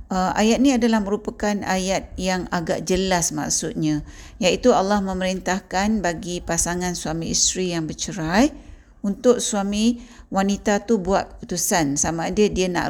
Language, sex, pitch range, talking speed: Malay, female, 165-215 Hz, 135 wpm